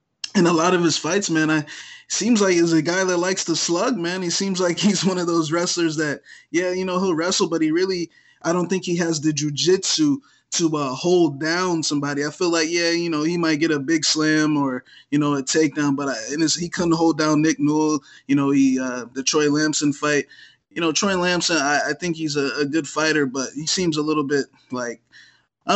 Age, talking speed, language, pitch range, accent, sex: 20-39, 235 wpm, English, 150-180 Hz, American, male